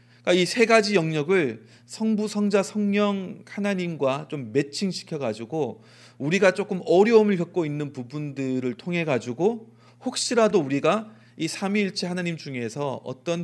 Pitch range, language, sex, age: 120-165 Hz, Korean, male, 30-49